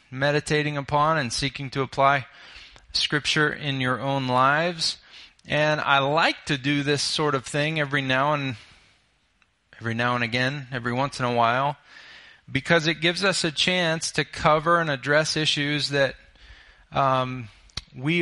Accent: American